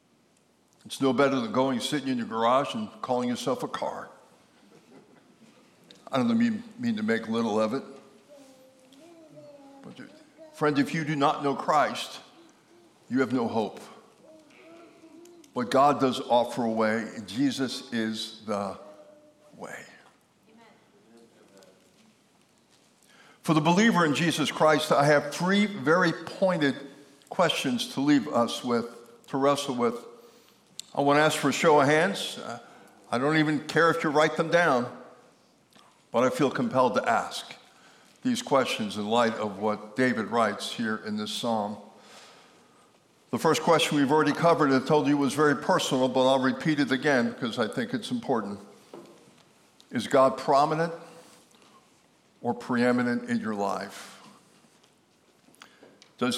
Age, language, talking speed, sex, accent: 60-79, English, 140 wpm, male, American